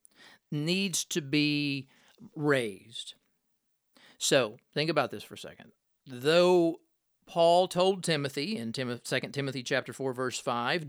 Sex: male